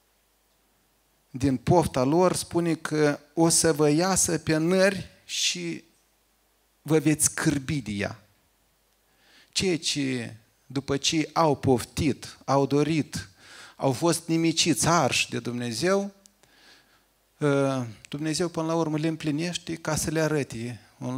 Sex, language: male, Romanian